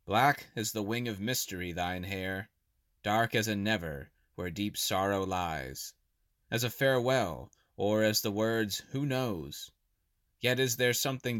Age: 20-39